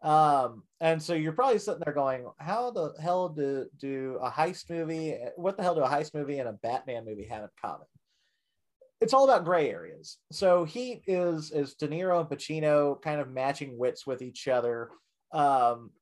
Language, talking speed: English, 190 wpm